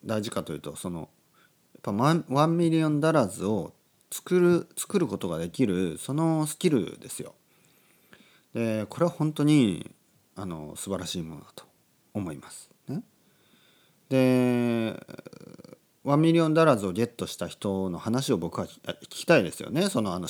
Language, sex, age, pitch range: Japanese, male, 40-59, 90-150 Hz